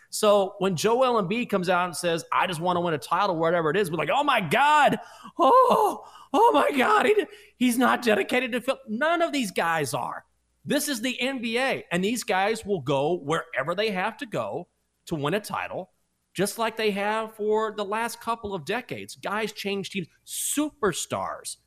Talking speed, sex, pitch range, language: 190 wpm, male, 145-215 Hz, English